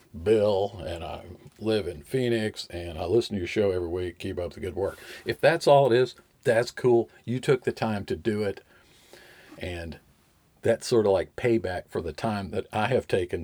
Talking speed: 205 wpm